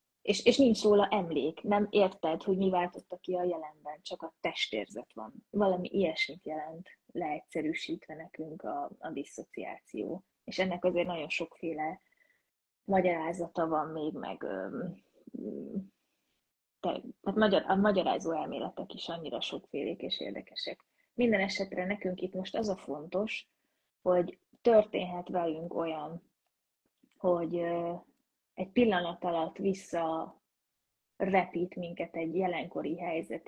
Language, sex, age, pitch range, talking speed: Hungarian, female, 20-39, 165-195 Hz, 120 wpm